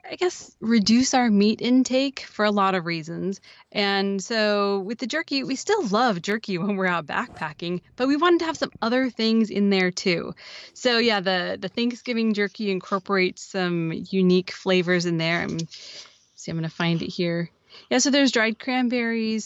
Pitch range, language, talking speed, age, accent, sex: 180-225 Hz, English, 185 wpm, 20-39, American, female